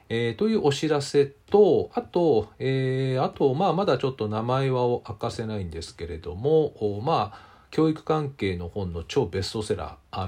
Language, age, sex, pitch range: Japanese, 40-59, male, 95-140 Hz